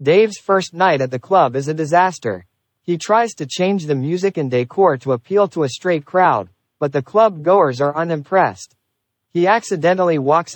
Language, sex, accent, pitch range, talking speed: English, male, American, 130-185 Hz, 180 wpm